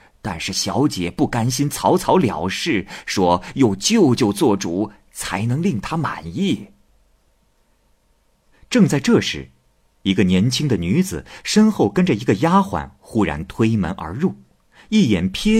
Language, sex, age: Chinese, male, 50-69